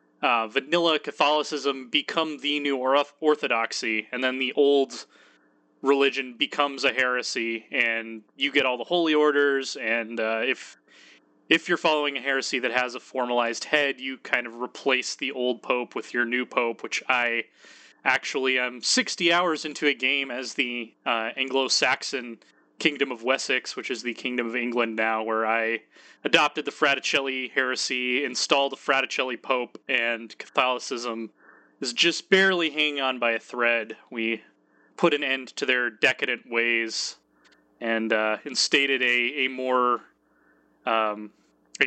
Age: 20-39